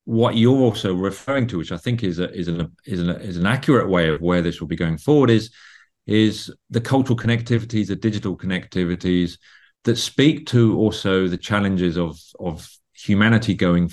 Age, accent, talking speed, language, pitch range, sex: 40-59, British, 185 wpm, English, 90-115 Hz, male